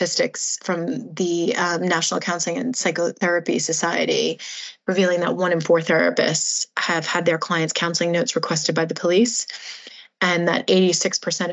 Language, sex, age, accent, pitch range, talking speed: English, female, 20-39, American, 170-195 Hz, 145 wpm